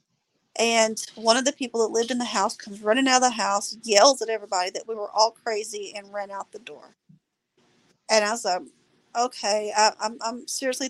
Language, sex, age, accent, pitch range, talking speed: English, female, 40-59, American, 210-245 Hz, 205 wpm